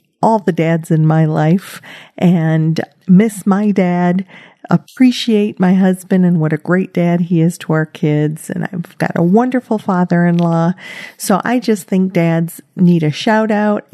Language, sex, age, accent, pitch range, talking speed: English, female, 50-69, American, 170-215 Hz, 165 wpm